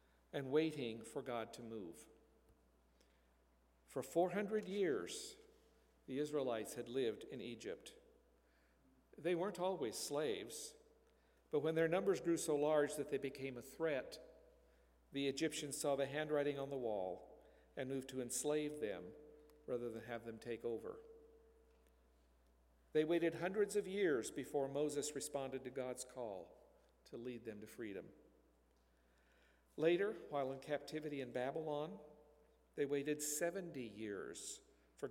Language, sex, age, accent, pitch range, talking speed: English, male, 50-69, American, 110-160 Hz, 130 wpm